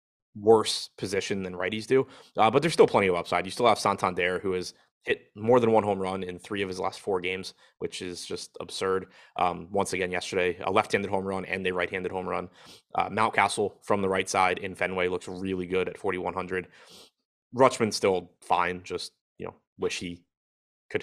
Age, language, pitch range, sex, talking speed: 20-39, English, 95-110 Hz, male, 210 wpm